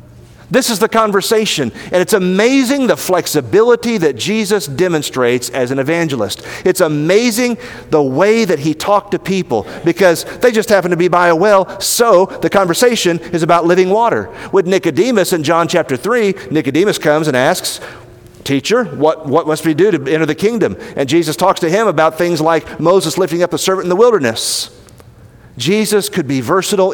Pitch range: 145-195 Hz